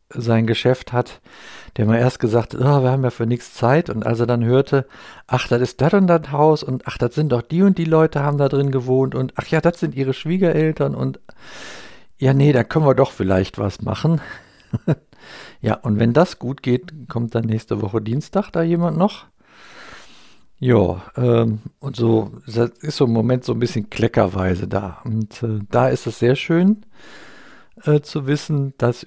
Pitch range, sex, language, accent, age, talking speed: 115-145 Hz, male, German, German, 60-79, 195 wpm